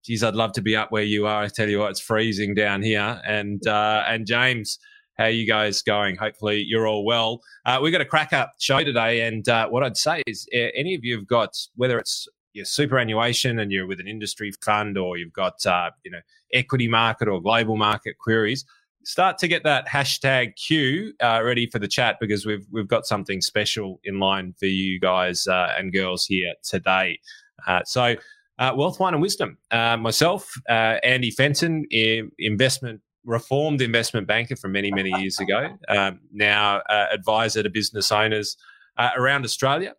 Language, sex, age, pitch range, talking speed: English, male, 20-39, 105-130 Hz, 195 wpm